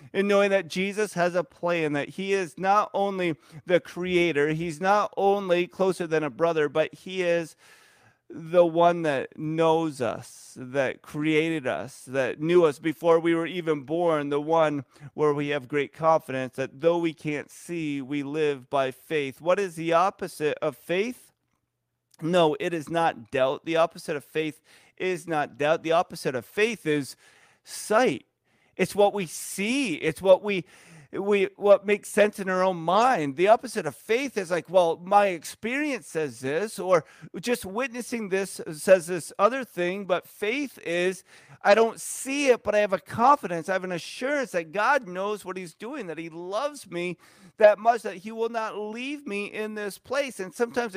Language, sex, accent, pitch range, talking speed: English, male, American, 160-205 Hz, 180 wpm